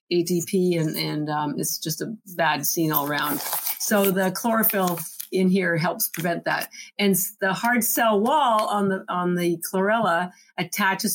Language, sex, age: English, female, 50-69